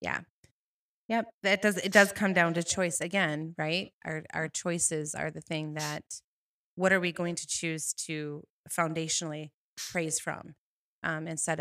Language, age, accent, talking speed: English, 30-49, American, 160 wpm